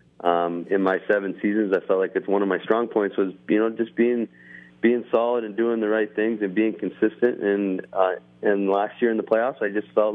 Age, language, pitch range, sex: 30-49, English, 85-110 Hz, male